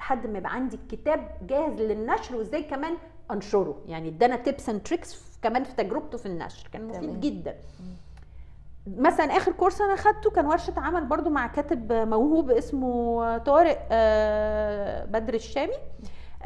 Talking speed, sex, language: 145 wpm, female, English